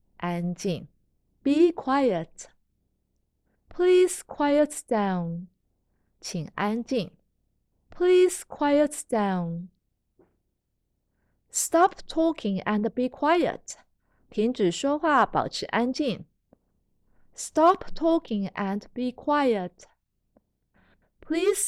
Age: 30-49